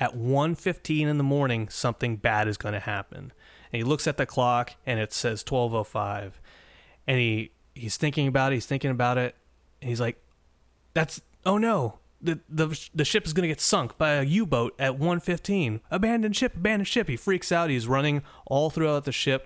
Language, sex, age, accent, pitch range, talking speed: English, male, 30-49, American, 105-140 Hz, 215 wpm